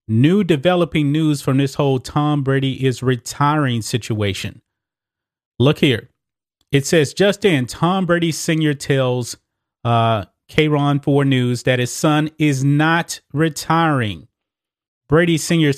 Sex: male